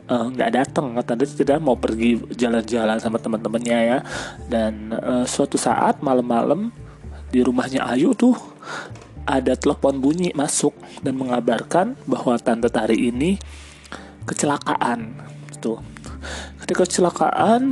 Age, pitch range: 30-49, 115-135 Hz